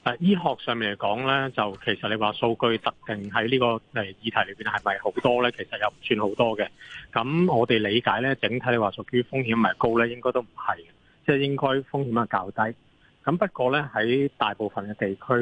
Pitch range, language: 105-130 Hz, Chinese